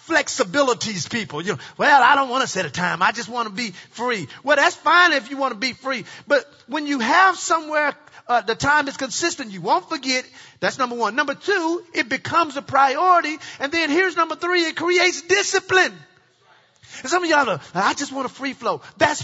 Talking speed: 215 wpm